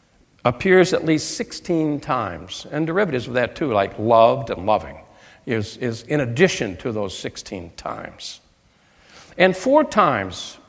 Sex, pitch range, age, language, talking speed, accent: male, 130-200 Hz, 60-79, English, 140 wpm, American